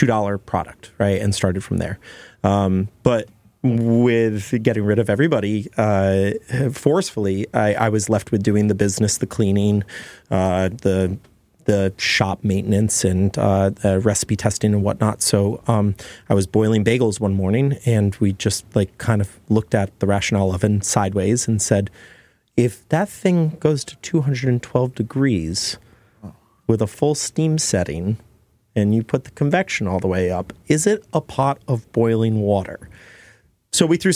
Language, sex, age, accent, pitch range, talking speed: English, male, 30-49, American, 100-115 Hz, 160 wpm